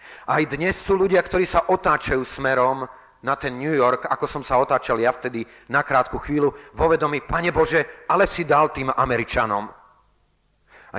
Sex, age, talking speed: male, 40-59, 165 wpm